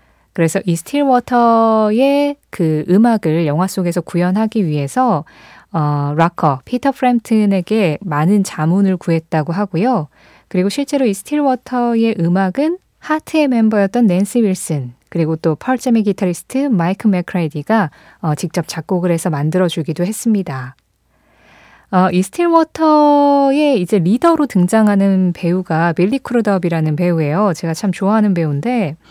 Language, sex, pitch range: Korean, female, 165-235 Hz